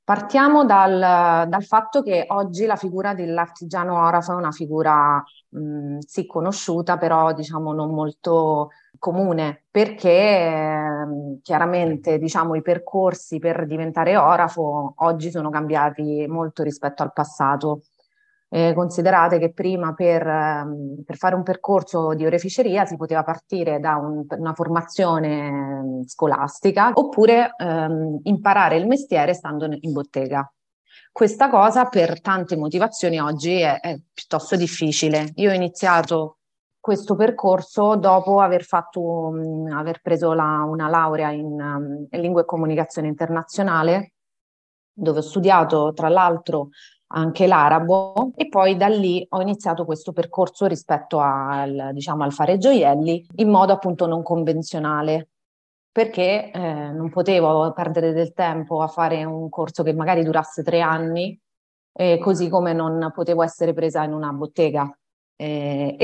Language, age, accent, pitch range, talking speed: Italian, 30-49, native, 155-185 Hz, 125 wpm